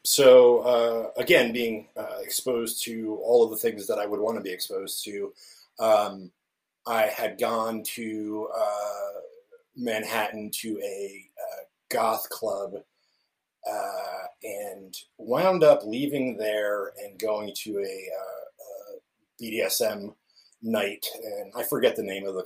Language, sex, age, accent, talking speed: English, male, 30-49, American, 135 wpm